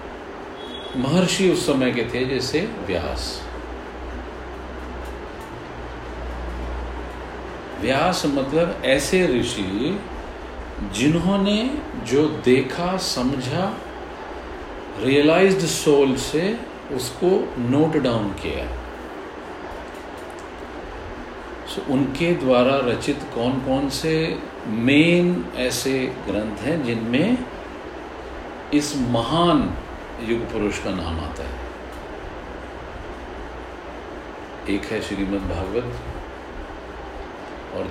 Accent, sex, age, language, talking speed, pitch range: native, male, 50-69, Hindi, 70 wpm, 105-170 Hz